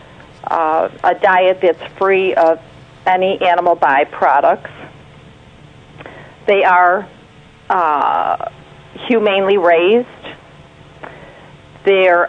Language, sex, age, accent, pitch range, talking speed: English, female, 50-69, American, 175-205 Hz, 75 wpm